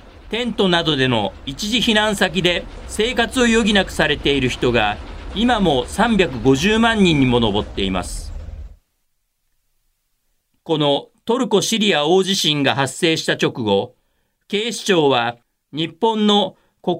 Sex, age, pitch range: male, 40-59, 130-215 Hz